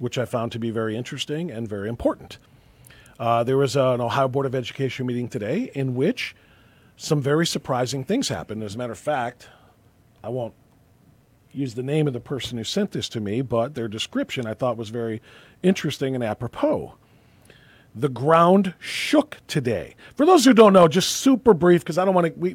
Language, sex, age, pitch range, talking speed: English, male, 40-59, 125-150 Hz, 190 wpm